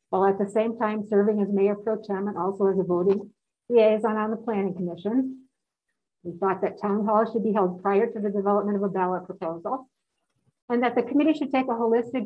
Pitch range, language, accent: 200-240 Hz, English, American